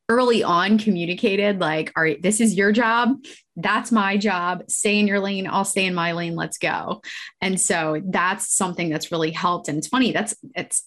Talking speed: 195 wpm